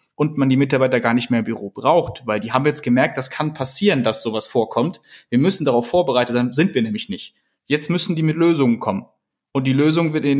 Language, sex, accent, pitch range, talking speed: German, male, German, 125-150 Hz, 240 wpm